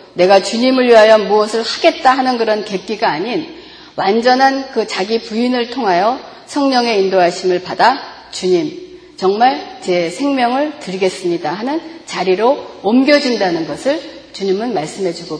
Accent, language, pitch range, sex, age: native, Korean, 195-280 Hz, female, 40-59